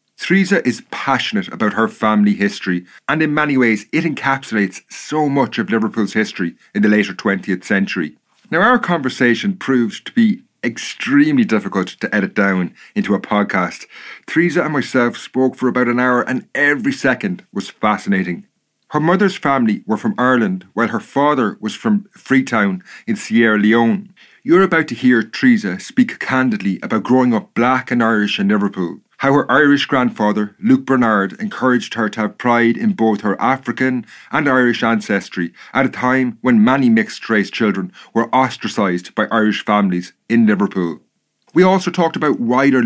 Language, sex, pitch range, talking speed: English, male, 110-165 Hz, 165 wpm